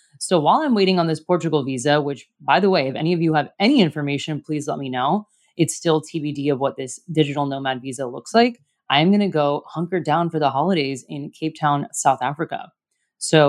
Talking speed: 220 wpm